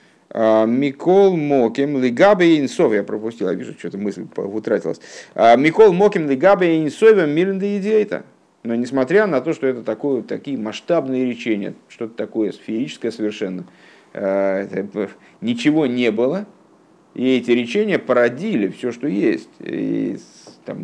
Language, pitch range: Russian, 110-130 Hz